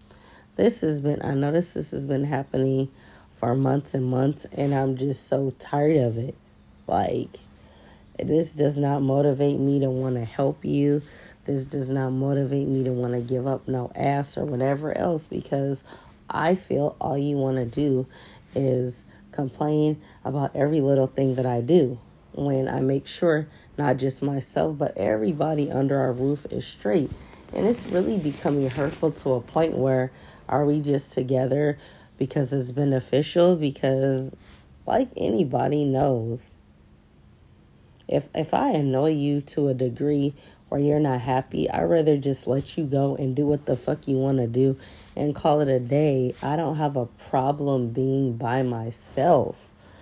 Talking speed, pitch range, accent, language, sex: 165 wpm, 130-145 Hz, American, English, female